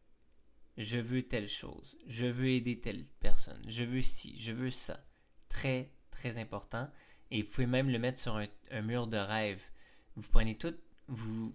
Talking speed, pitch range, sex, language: 175 wpm, 110-130 Hz, male, French